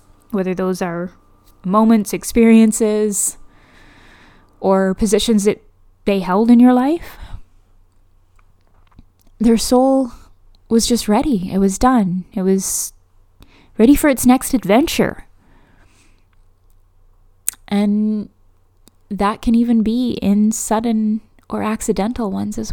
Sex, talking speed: female, 105 wpm